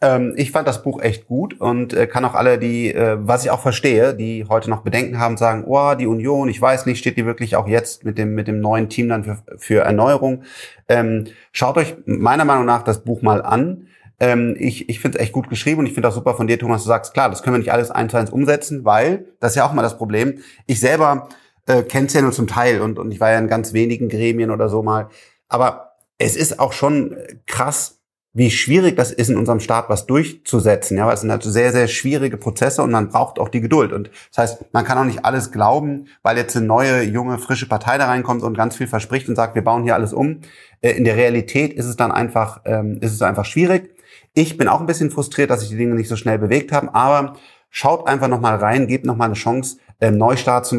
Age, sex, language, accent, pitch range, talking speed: 30-49, male, German, German, 110-130 Hz, 250 wpm